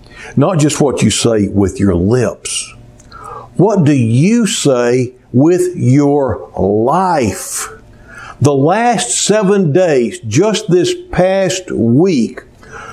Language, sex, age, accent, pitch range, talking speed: English, male, 60-79, American, 120-185 Hz, 105 wpm